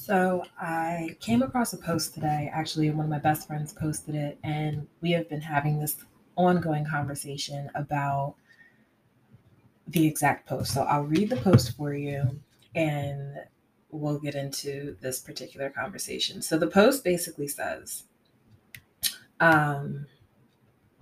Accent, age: American, 20-39